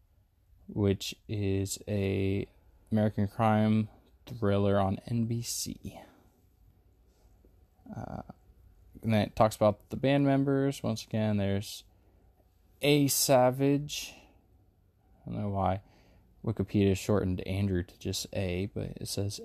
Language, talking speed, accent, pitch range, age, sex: English, 110 wpm, American, 95-115 Hz, 20-39, male